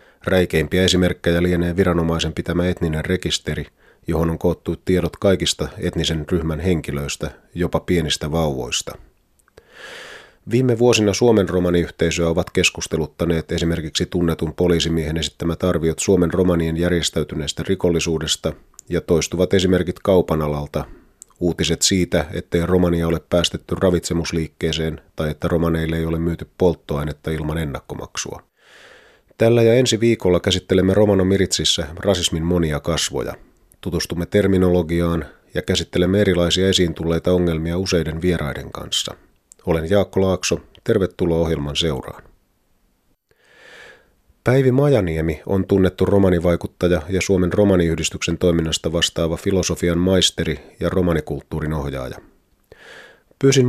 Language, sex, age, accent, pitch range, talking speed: Finnish, male, 30-49, native, 80-95 Hz, 105 wpm